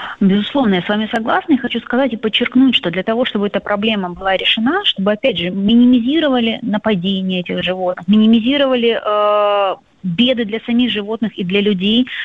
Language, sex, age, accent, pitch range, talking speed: Russian, female, 30-49, native, 200-250 Hz, 165 wpm